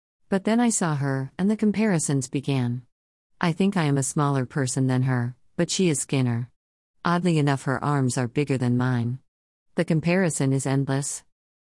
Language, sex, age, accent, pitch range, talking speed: English, female, 40-59, American, 130-175 Hz, 175 wpm